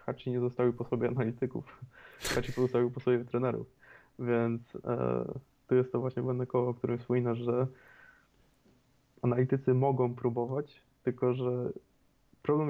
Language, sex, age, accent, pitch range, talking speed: Polish, male, 20-39, native, 120-125 Hz, 135 wpm